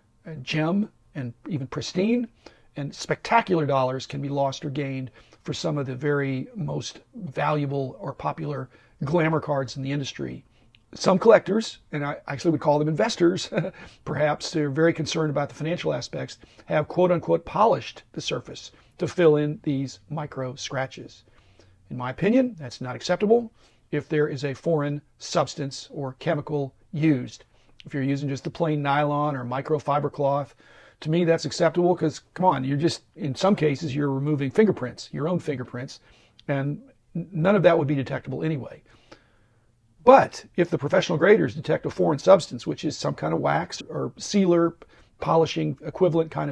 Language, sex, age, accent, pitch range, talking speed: English, male, 40-59, American, 135-165 Hz, 165 wpm